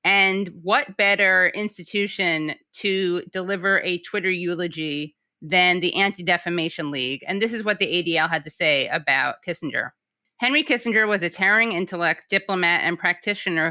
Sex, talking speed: female, 145 wpm